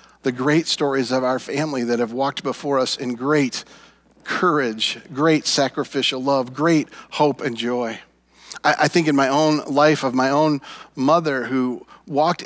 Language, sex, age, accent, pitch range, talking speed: English, male, 40-59, American, 145-185 Hz, 165 wpm